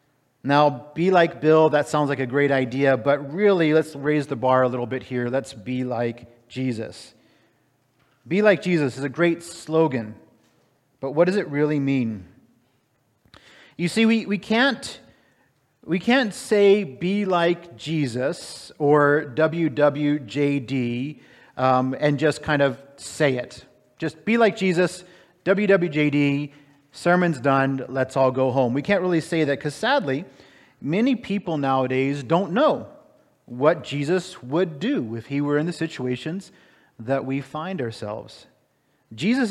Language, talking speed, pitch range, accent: English, 145 wpm, 130-170 Hz, American